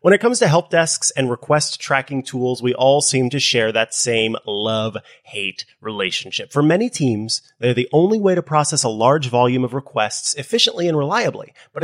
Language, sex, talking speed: English, male, 190 wpm